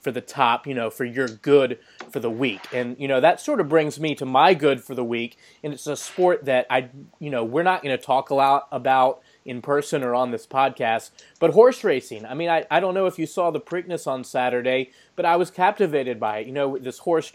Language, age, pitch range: English, 20-39, 125-150 Hz